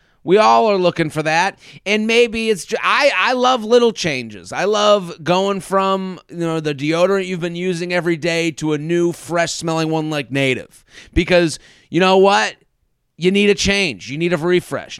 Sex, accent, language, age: male, American, English, 30-49